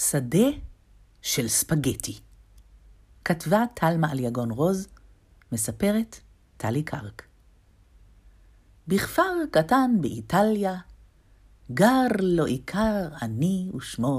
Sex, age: female, 50-69